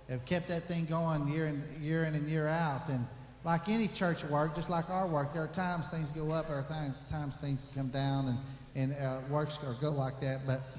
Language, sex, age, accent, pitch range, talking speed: English, male, 50-69, American, 130-155 Hz, 245 wpm